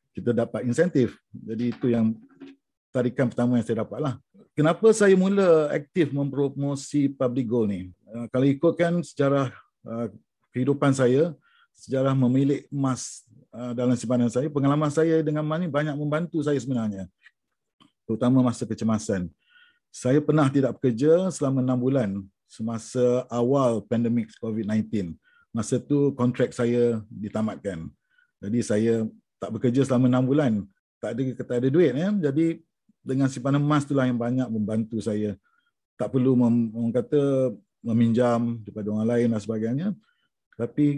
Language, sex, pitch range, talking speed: Malay, male, 115-140 Hz, 135 wpm